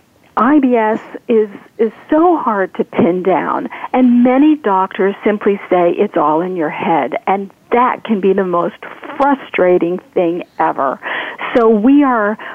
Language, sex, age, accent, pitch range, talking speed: English, female, 50-69, American, 195-240 Hz, 145 wpm